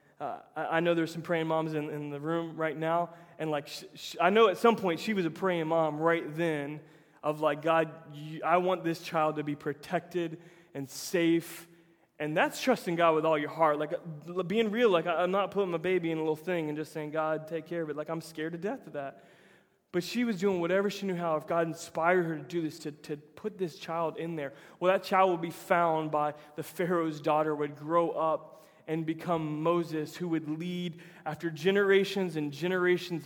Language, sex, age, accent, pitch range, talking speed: English, male, 20-39, American, 155-185 Hz, 225 wpm